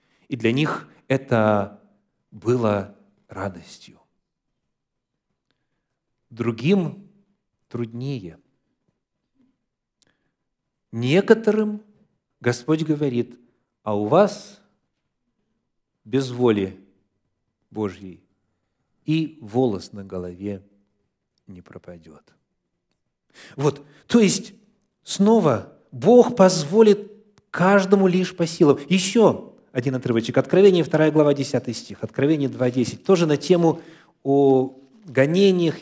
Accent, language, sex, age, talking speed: native, Russian, male, 40-59, 80 wpm